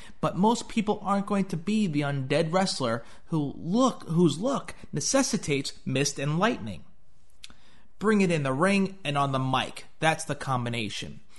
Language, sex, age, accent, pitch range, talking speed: English, male, 30-49, American, 145-200 Hz, 160 wpm